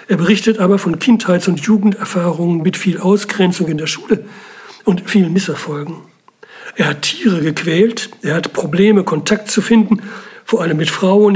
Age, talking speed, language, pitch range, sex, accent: 60-79, 160 wpm, German, 170-210 Hz, male, German